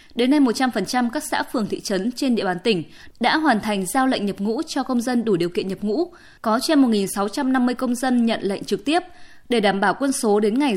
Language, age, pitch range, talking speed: Vietnamese, 20-39, 215-275 Hz, 240 wpm